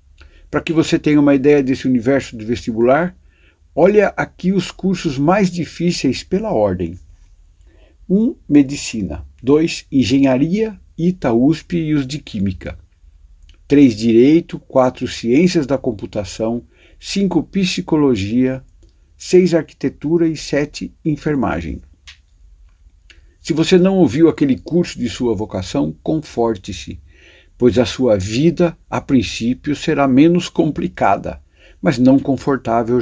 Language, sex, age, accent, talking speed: Portuguese, male, 60-79, Brazilian, 115 wpm